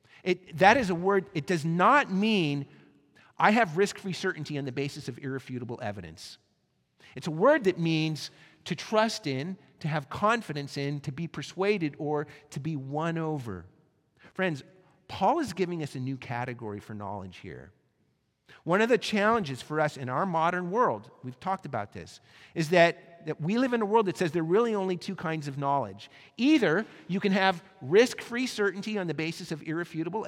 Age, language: 50-69, English